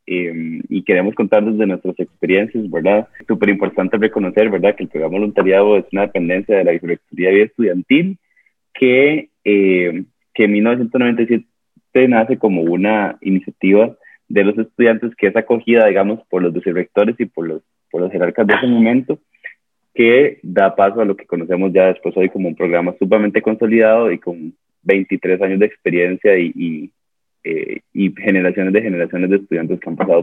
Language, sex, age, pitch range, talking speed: Spanish, male, 20-39, 95-115 Hz, 170 wpm